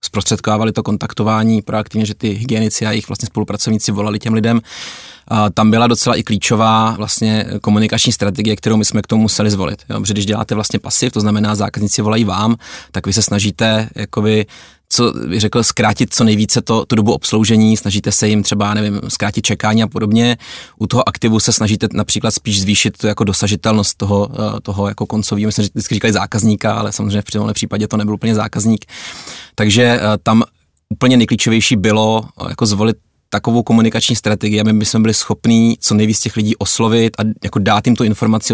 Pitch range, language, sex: 105-115 Hz, Czech, male